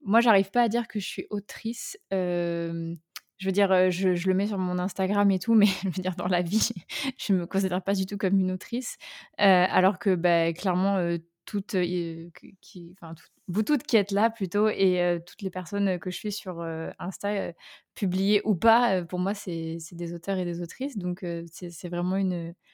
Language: French